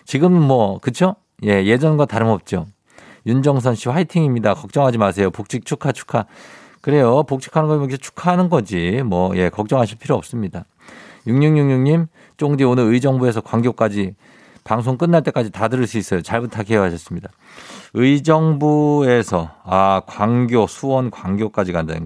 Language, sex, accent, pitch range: Korean, male, native, 95-140 Hz